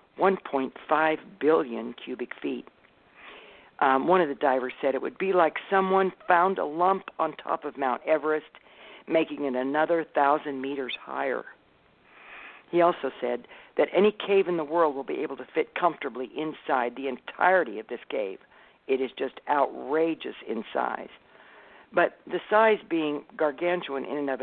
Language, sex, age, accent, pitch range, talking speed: English, female, 60-79, American, 130-175 Hz, 155 wpm